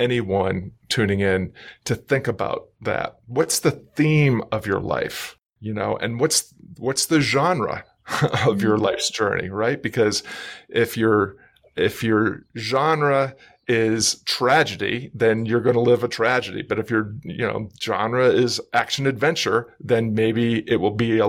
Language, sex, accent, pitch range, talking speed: English, male, American, 105-125 Hz, 155 wpm